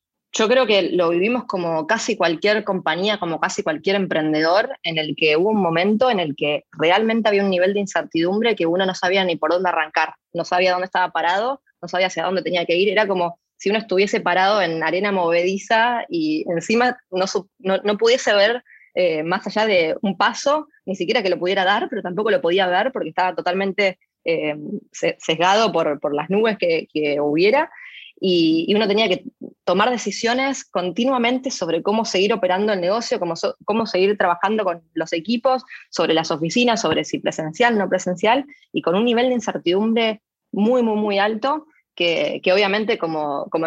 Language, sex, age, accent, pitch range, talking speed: Spanish, female, 20-39, Argentinian, 175-220 Hz, 190 wpm